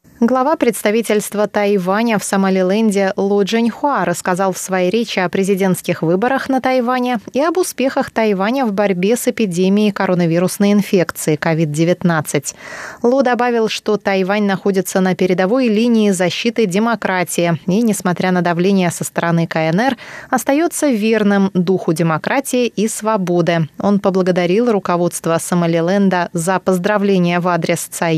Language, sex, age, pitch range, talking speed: Russian, female, 20-39, 180-225 Hz, 125 wpm